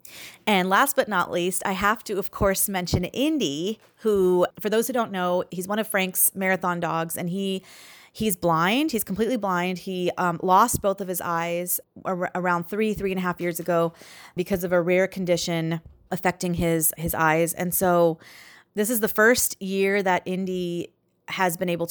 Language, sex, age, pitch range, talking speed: English, female, 30-49, 170-195 Hz, 185 wpm